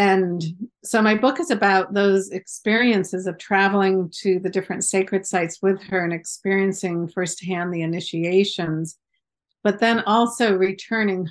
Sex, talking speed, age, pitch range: female, 140 wpm, 50-69, 180-210 Hz